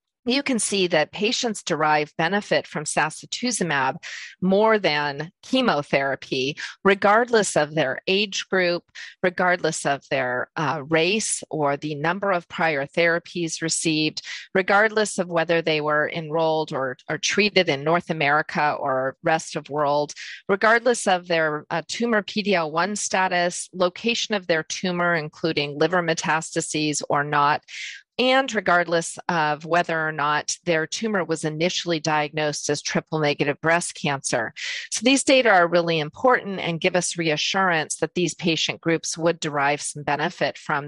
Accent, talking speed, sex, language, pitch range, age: American, 145 wpm, female, English, 155-190 Hz, 40-59